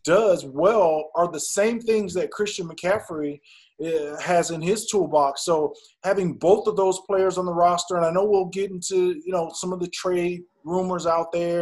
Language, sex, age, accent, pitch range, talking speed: English, male, 20-39, American, 145-185 Hz, 195 wpm